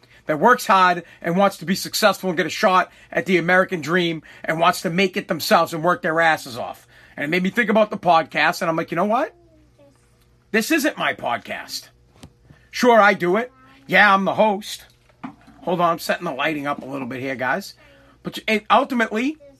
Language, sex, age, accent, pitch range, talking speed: English, male, 40-59, American, 170-220 Hz, 205 wpm